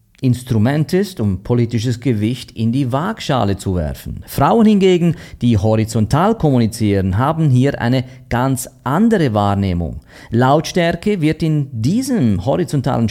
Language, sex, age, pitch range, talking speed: German, male, 40-59, 115-160 Hz, 120 wpm